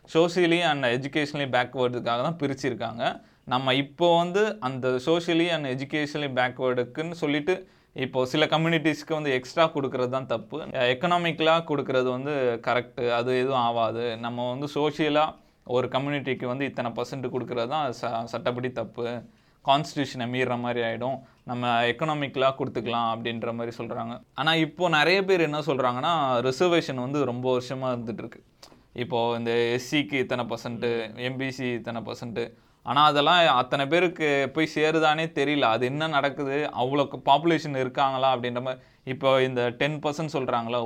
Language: Tamil